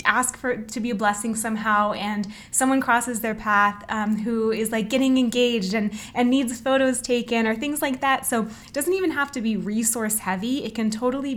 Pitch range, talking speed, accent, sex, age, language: 205-245 Hz, 210 wpm, American, female, 20-39, English